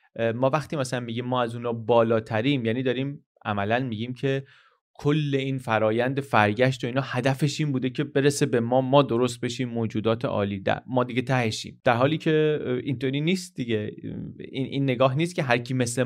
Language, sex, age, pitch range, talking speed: Persian, male, 30-49, 110-135 Hz, 180 wpm